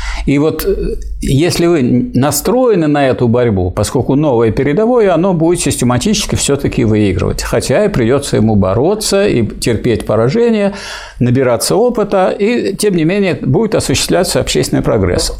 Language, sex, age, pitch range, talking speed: Russian, male, 50-69, 115-150 Hz, 135 wpm